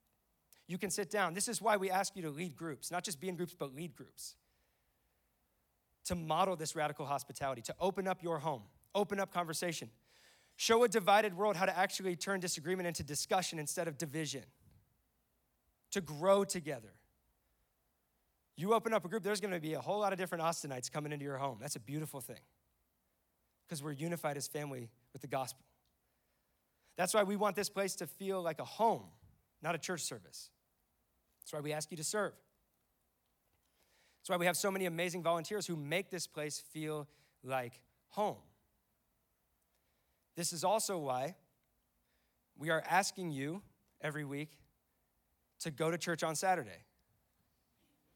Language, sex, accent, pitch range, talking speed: English, male, American, 130-185 Hz, 165 wpm